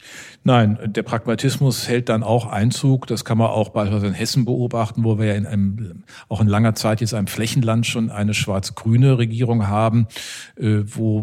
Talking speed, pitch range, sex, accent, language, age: 175 wpm, 105-130 Hz, male, German, German, 50-69